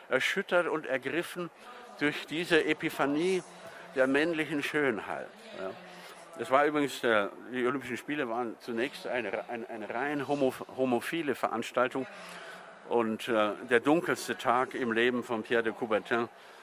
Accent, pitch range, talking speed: German, 115-145 Hz, 135 wpm